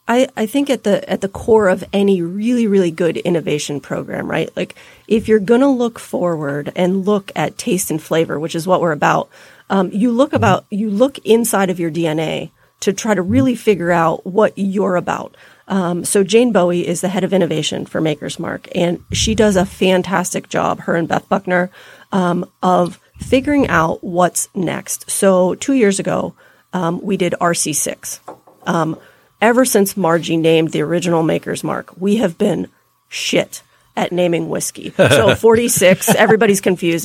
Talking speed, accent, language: 175 wpm, American, English